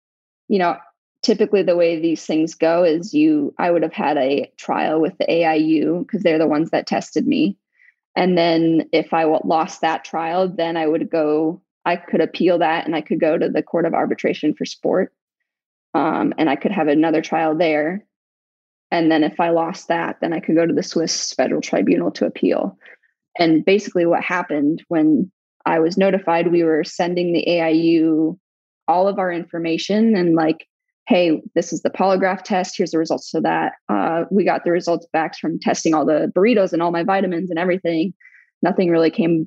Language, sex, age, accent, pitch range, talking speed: English, female, 20-39, American, 160-190 Hz, 195 wpm